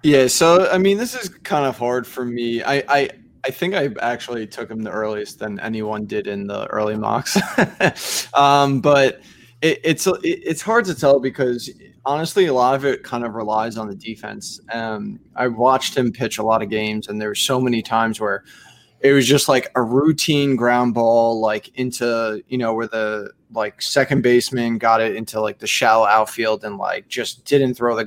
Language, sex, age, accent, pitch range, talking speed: English, male, 20-39, American, 115-140 Hz, 205 wpm